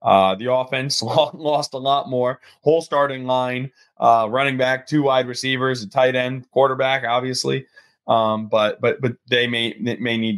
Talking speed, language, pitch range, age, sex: 170 wpm, English, 110-145 Hz, 20-39, male